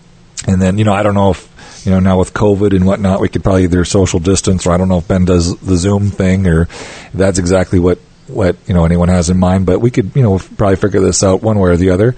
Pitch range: 95-120 Hz